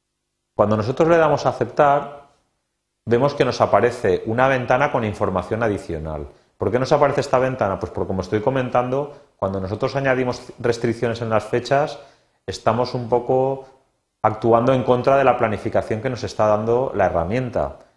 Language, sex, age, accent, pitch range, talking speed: Spanish, male, 30-49, Spanish, 105-135 Hz, 160 wpm